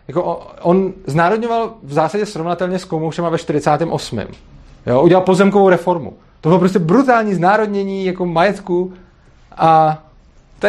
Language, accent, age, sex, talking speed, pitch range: Czech, native, 30-49, male, 130 wpm, 145-190 Hz